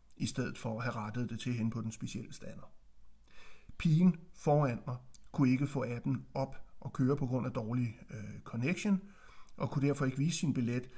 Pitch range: 120-160 Hz